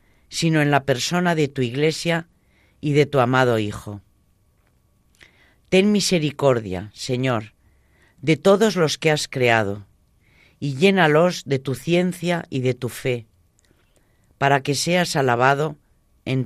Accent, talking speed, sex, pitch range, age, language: Spanish, 130 wpm, female, 105-160 Hz, 40-59, Spanish